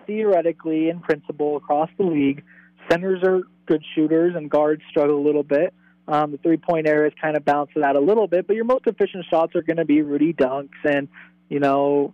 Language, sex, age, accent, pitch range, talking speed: English, male, 20-39, American, 145-175 Hz, 215 wpm